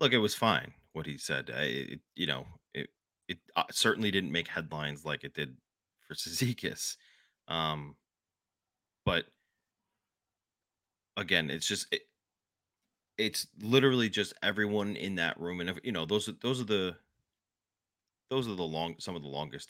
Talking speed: 155 wpm